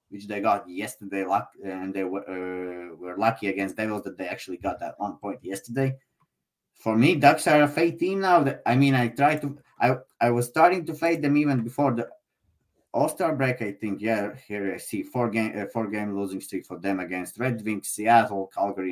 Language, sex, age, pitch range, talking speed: English, male, 20-39, 105-125 Hz, 215 wpm